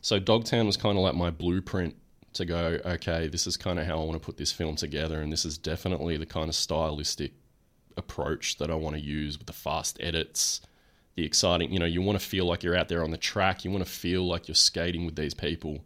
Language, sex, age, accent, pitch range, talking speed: English, male, 20-39, Australian, 85-100 Hz, 250 wpm